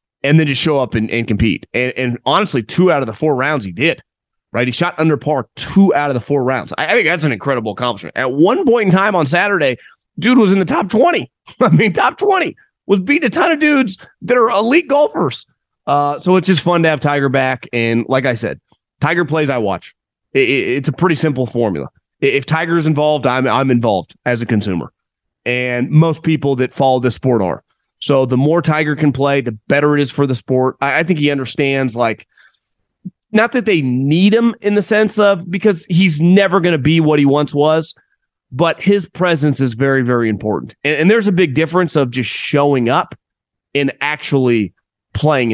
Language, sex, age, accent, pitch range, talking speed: English, male, 30-49, American, 125-175 Hz, 210 wpm